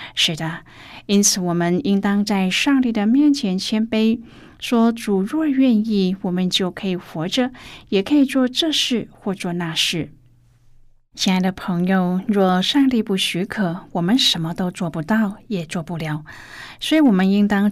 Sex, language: female, Chinese